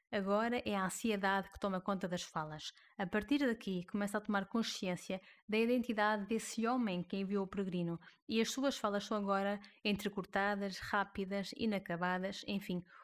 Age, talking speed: 20-39, 155 wpm